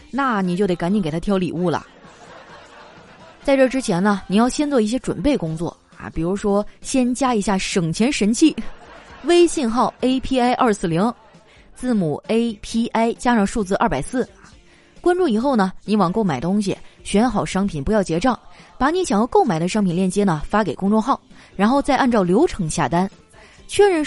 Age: 20-39